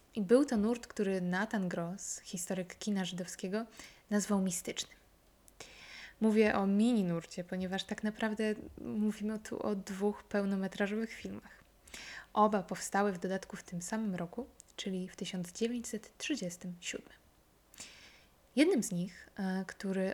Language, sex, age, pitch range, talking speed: Polish, female, 20-39, 185-215 Hz, 115 wpm